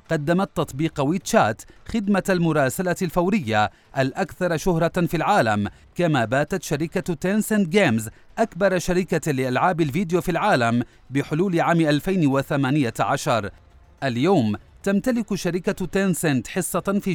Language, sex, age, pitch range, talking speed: Arabic, male, 40-59, 130-180 Hz, 105 wpm